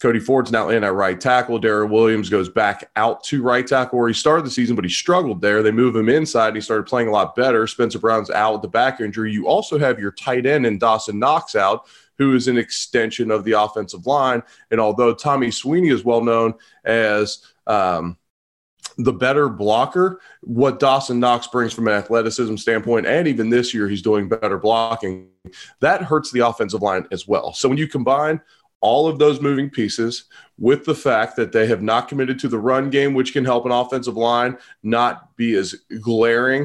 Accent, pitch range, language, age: American, 110-130 Hz, English, 30-49